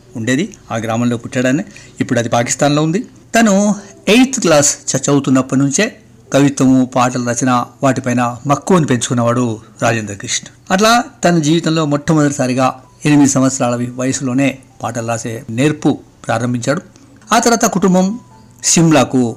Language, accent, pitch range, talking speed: Telugu, native, 125-150 Hz, 110 wpm